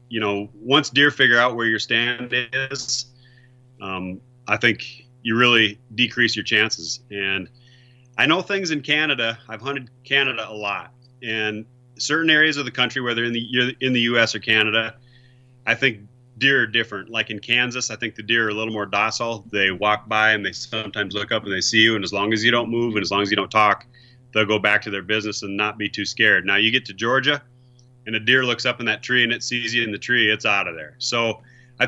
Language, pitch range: English, 105-125 Hz